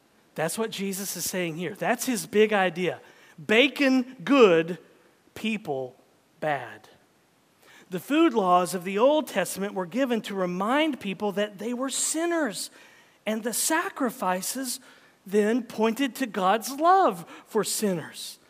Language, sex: English, male